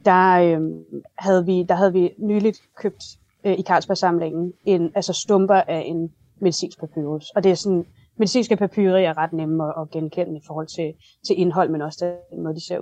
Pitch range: 165-195 Hz